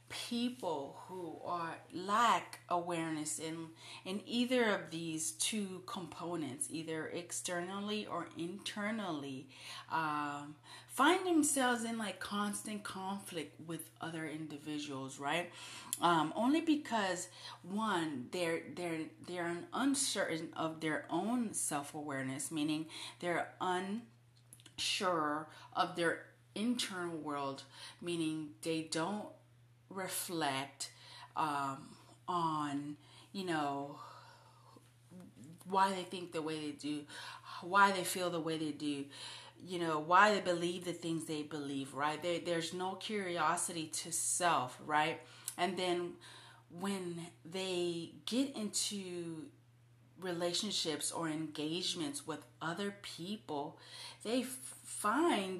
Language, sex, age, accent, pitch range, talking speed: English, female, 30-49, American, 150-195 Hz, 110 wpm